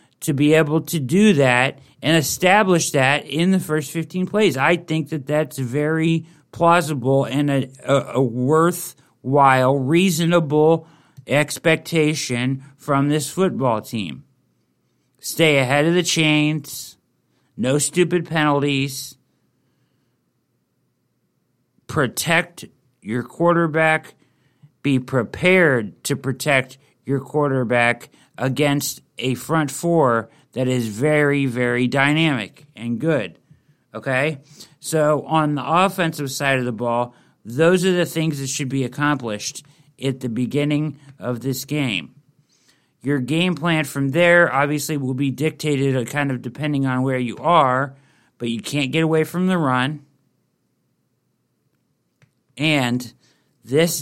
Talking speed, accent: 120 wpm, American